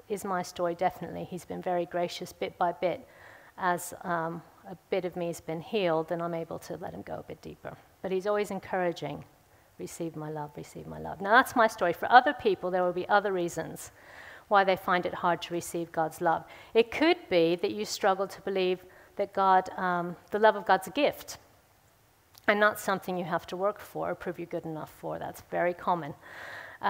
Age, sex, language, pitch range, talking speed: 50-69, female, English, 170-210 Hz, 210 wpm